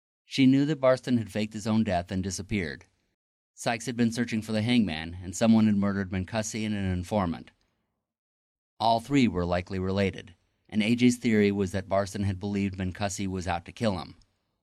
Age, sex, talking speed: 30-49, male, 185 wpm